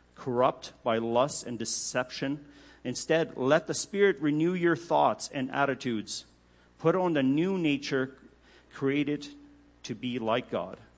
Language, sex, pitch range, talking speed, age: English, male, 110-140 Hz, 130 wpm, 50-69